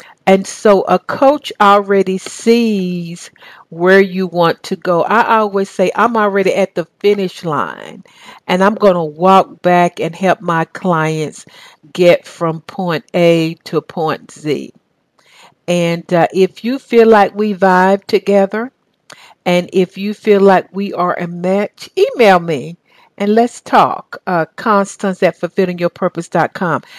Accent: American